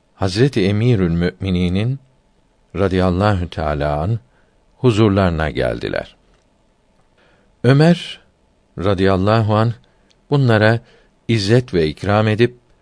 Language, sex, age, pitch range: Turkish, male, 60-79, 85-115 Hz